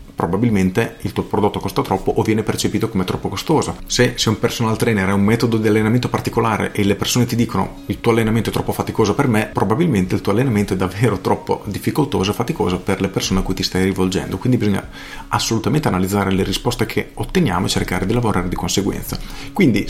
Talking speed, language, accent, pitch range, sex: 210 wpm, Italian, native, 95-115 Hz, male